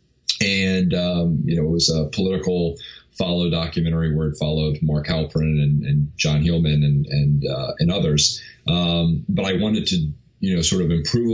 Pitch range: 75-90 Hz